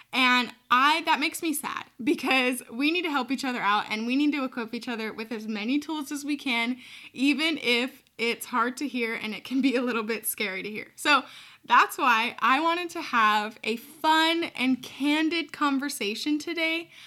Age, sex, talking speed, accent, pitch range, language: 10-29, female, 200 wpm, American, 230-290 Hz, English